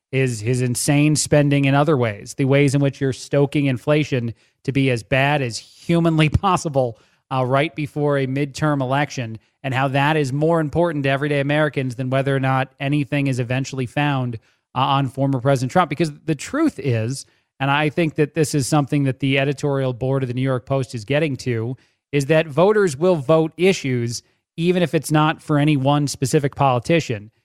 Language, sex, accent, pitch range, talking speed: English, male, American, 130-155 Hz, 190 wpm